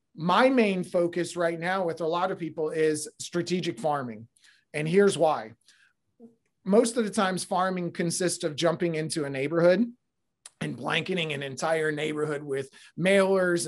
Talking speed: 150 wpm